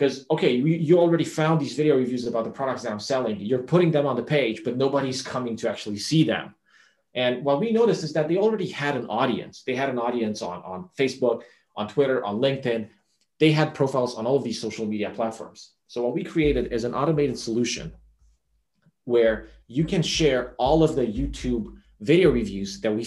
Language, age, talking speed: English, 30-49, 205 wpm